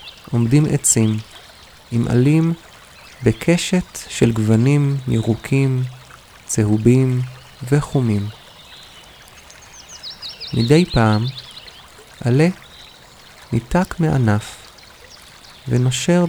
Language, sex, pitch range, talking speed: Hebrew, male, 110-140 Hz, 60 wpm